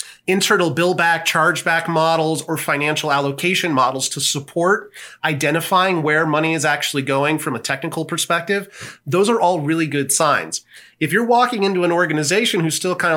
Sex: male